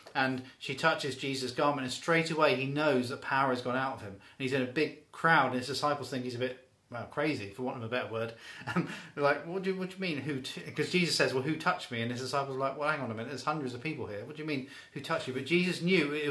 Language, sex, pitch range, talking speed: English, male, 120-145 Hz, 285 wpm